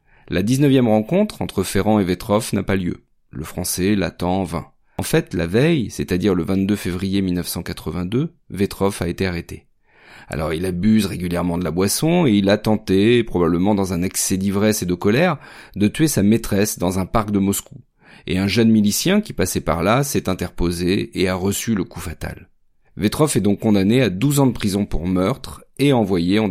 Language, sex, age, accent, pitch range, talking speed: French, male, 30-49, French, 90-115 Hz, 195 wpm